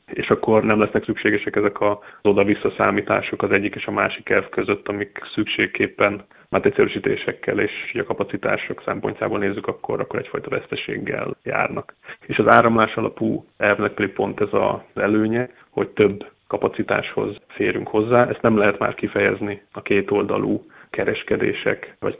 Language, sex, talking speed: Hungarian, male, 145 wpm